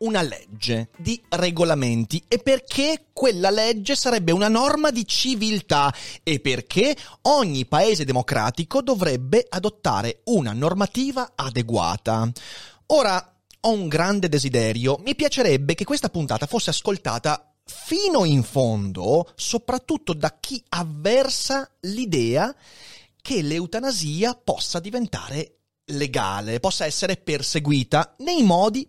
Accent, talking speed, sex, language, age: native, 110 wpm, male, Italian, 30-49